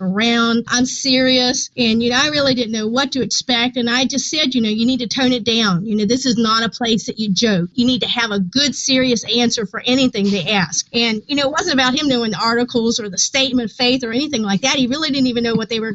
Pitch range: 215-255 Hz